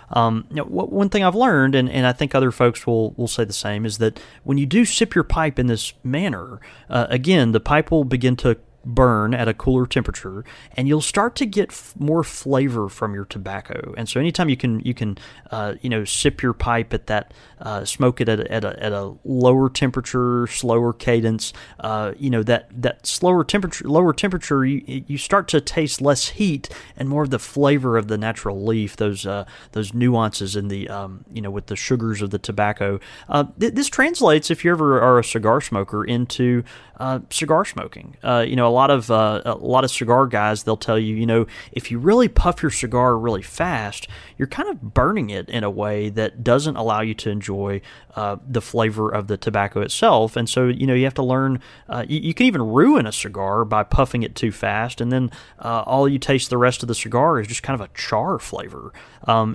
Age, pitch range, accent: 30-49, 110-140 Hz, American